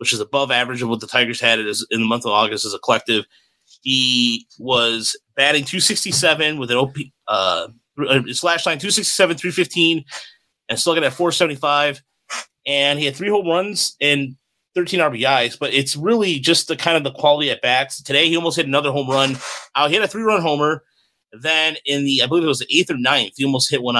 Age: 30-49